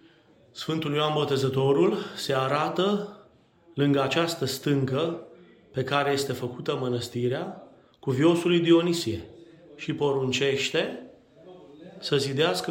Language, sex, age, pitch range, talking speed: Romanian, male, 30-49, 125-160 Hz, 95 wpm